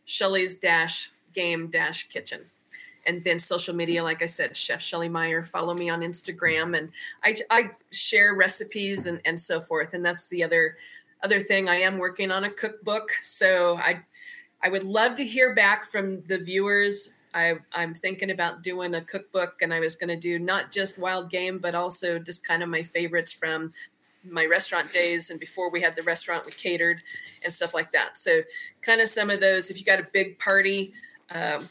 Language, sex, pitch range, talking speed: English, female, 170-210 Hz, 190 wpm